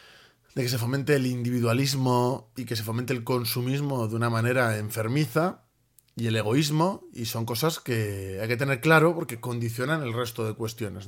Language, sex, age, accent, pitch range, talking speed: Spanish, male, 30-49, Spanish, 115-140 Hz, 180 wpm